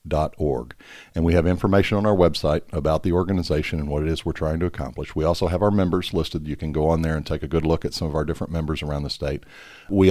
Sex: male